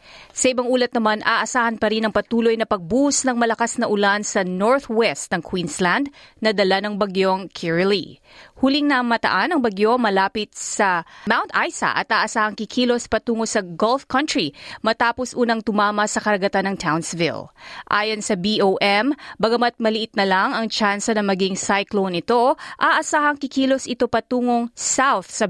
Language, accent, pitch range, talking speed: Filipino, native, 195-245 Hz, 155 wpm